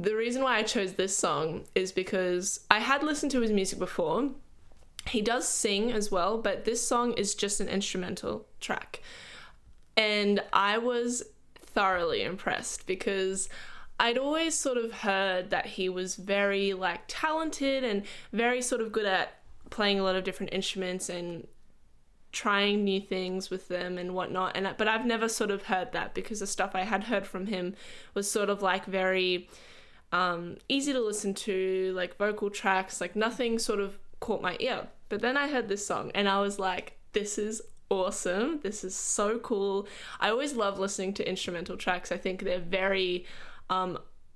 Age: 10-29